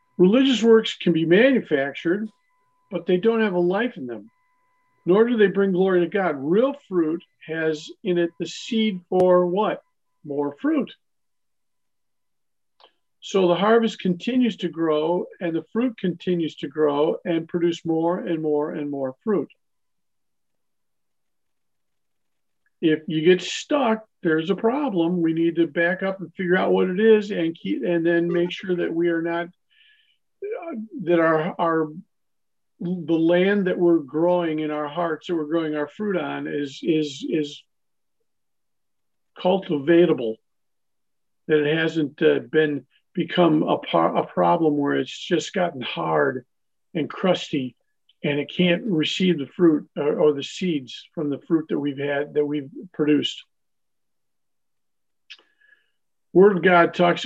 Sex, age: male, 50-69